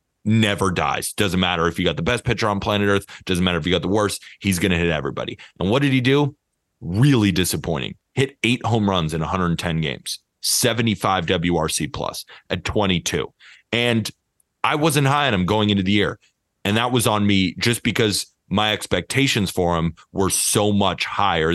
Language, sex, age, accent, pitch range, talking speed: English, male, 30-49, American, 90-115 Hz, 190 wpm